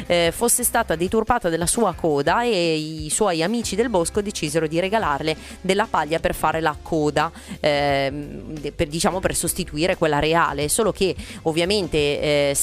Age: 30-49